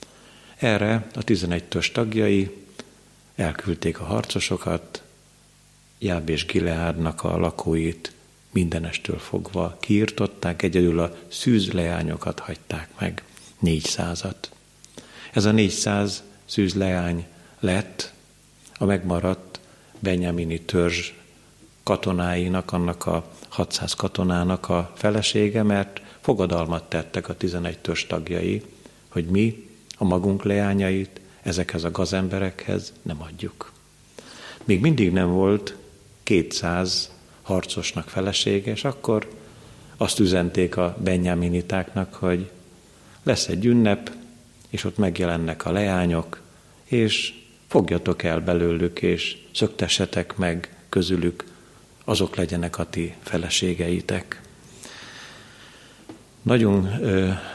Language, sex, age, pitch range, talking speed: Hungarian, male, 50-69, 85-105 Hz, 95 wpm